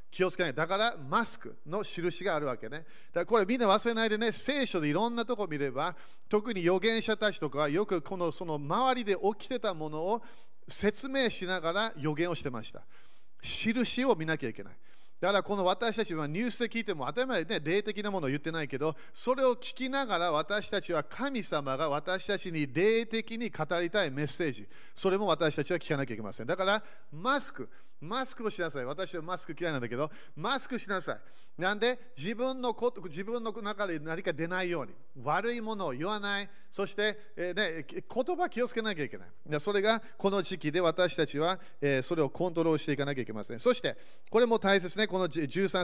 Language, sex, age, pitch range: Japanese, male, 40-59, 160-225 Hz